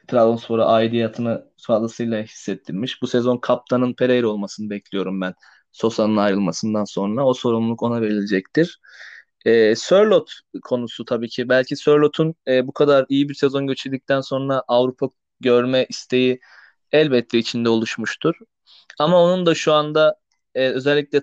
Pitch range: 115-145 Hz